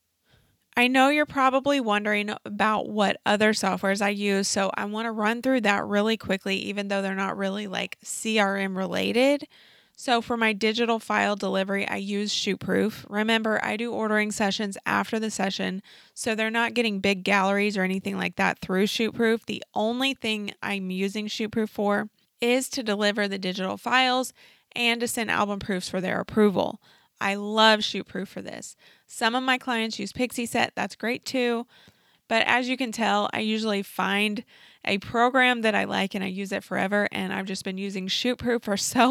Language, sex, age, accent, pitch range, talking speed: English, female, 20-39, American, 195-230 Hz, 185 wpm